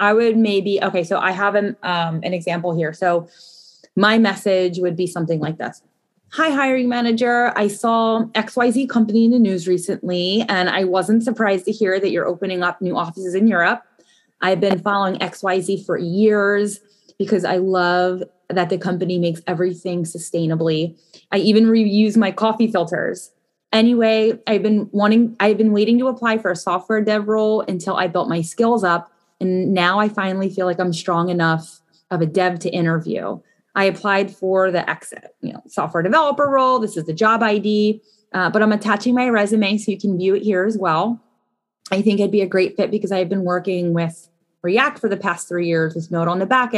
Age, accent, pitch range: 20-39, American, 175-215 Hz